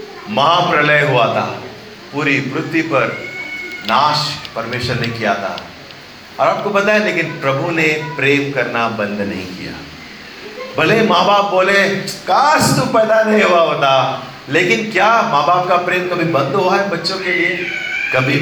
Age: 40-59